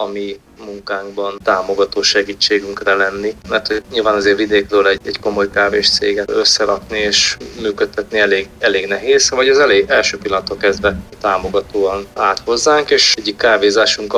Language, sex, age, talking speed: Hungarian, male, 20-39, 135 wpm